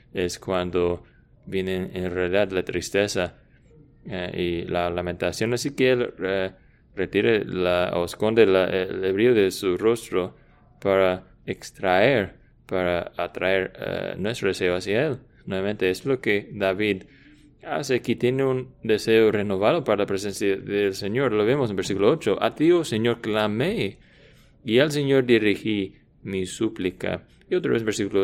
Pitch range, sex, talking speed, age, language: 95-115 Hz, male, 150 wpm, 20-39, English